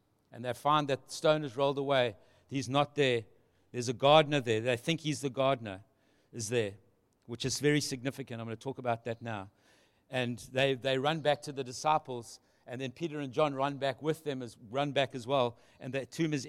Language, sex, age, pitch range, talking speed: English, male, 60-79, 130-175 Hz, 210 wpm